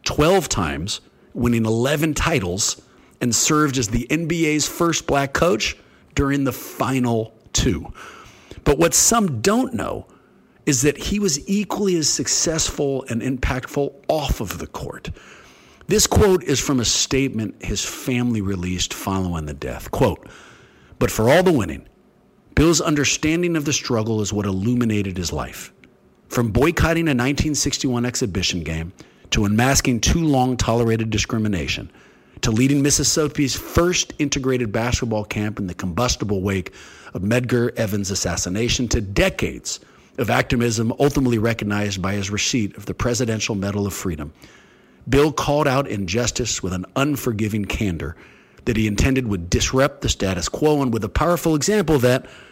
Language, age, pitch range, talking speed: English, 40-59, 100-140 Hz, 145 wpm